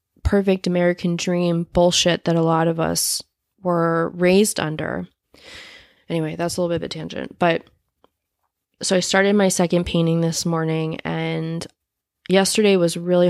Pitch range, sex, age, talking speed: 155-175 Hz, female, 20-39, 150 wpm